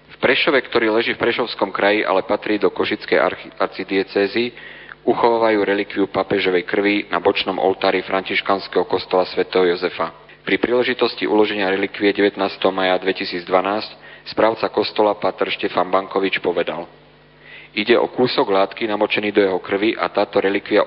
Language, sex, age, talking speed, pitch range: Slovak, male, 40-59, 130 wpm, 95-105 Hz